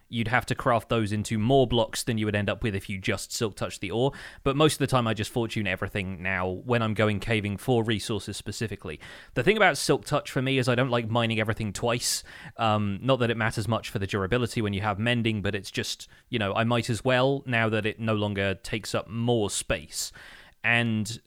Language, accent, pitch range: English, British, 105-125 Hz